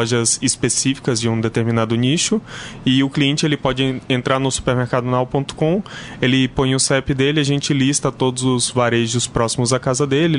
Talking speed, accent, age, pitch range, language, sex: 170 wpm, Brazilian, 20-39, 125-140 Hz, Portuguese, male